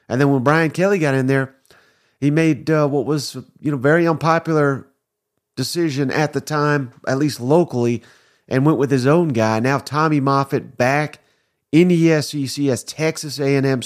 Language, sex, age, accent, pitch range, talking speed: English, male, 40-59, American, 130-165 Hz, 175 wpm